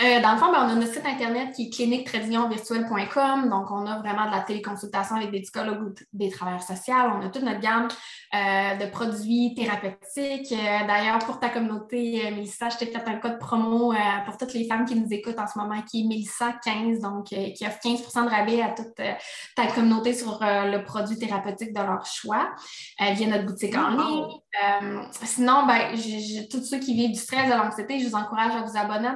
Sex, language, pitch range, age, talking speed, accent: female, French, 210-235 Hz, 20-39, 220 wpm, Canadian